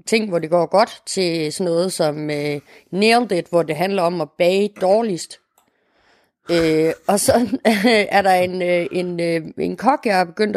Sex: female